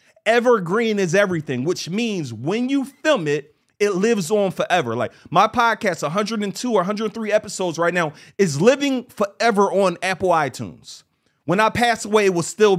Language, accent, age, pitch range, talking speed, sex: English, American, 30-49, 165-220 Hz, 165 wpm, male